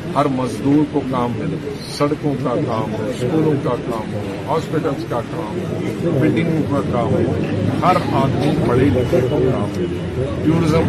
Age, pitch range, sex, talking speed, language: 50-69, 120-150 Hz, male, 160 wpm, Urdu